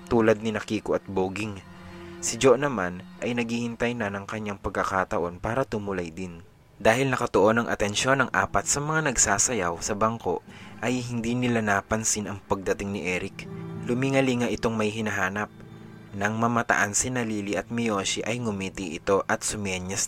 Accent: Filipino